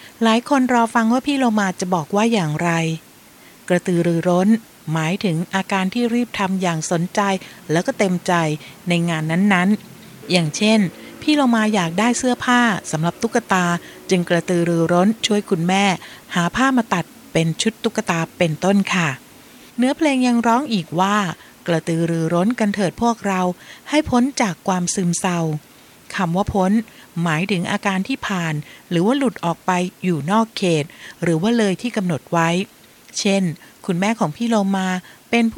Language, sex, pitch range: Thai, female, 175-220 Hz